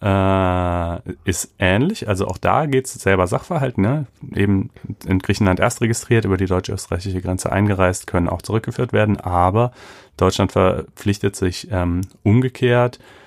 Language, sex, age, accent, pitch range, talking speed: German, male, 30-49, German, 90-105 Hz, 140 wpm